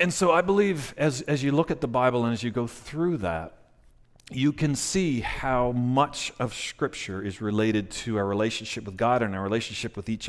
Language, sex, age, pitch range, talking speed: English, male, 40-59, 110-145 Hz, 210 wpm